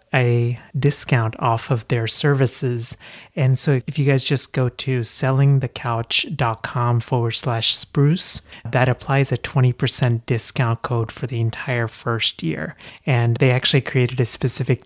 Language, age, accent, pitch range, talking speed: English, 30-49, American, 120-140 Hz, 140 wpm